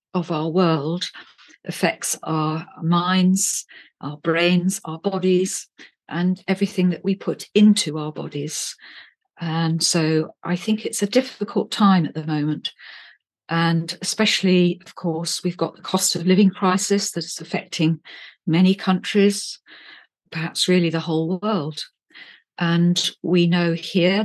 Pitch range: 165-195 Hz